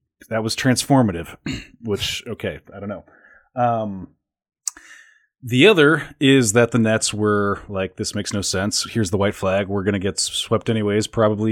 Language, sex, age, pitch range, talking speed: English, male, 30-49, 100-130 Hz, 165 wpm